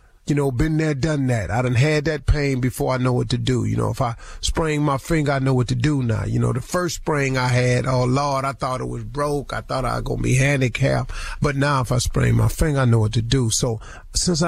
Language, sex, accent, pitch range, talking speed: English, male, American, 115-145 Hz, 275 wpm